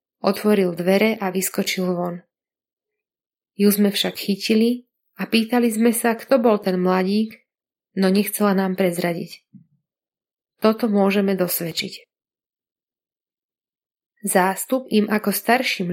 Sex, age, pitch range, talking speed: female, 30-49, 190-220 Hz, 105 wpm